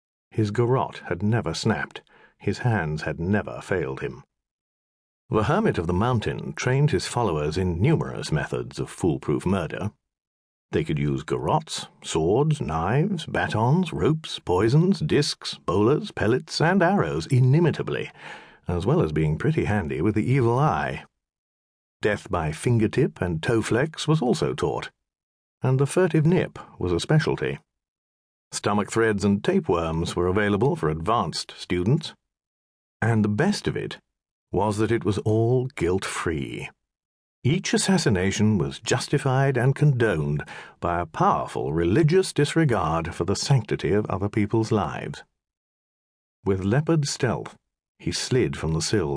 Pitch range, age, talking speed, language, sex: 75-130 Hz, 50-69, 135 wpm, English, male